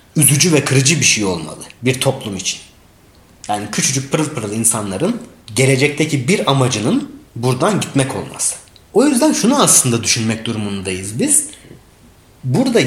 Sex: male